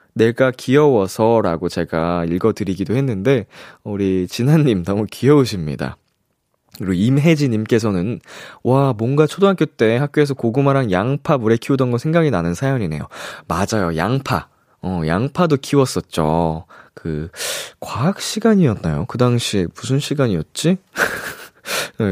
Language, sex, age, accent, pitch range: Korean, male, 20-39, native, 105-165 Hz